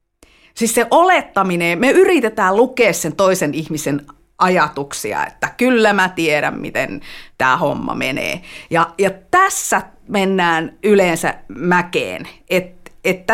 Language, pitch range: Finnish, 165-250 Hz